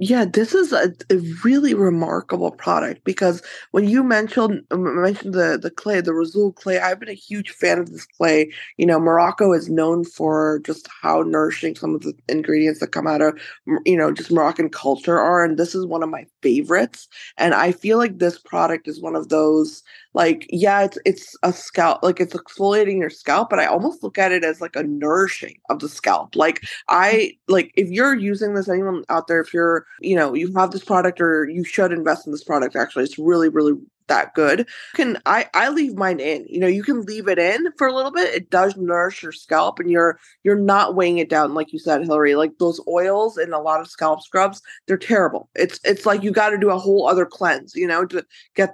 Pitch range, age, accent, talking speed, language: 160-200 Hz, 20-39, American, 225 wpm, English